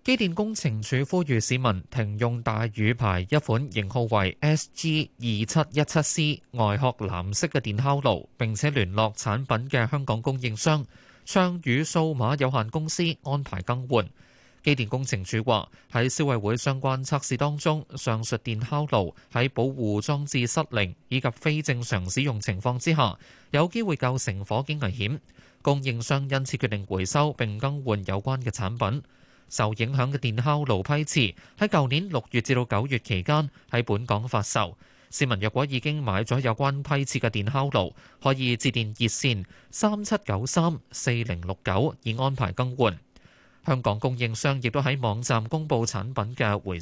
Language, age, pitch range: Chinese, 20-39, 110-145 Hz